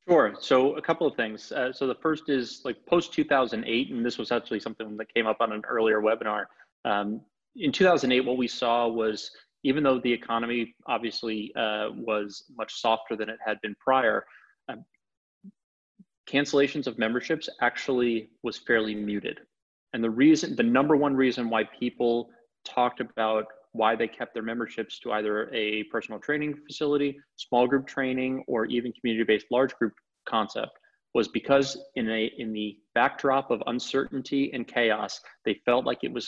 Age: 30-49